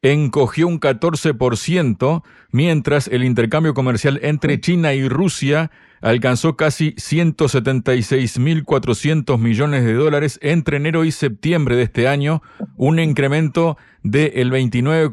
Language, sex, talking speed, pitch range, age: Spanish, male, 105 wpm, 120-155 Hz, 40-59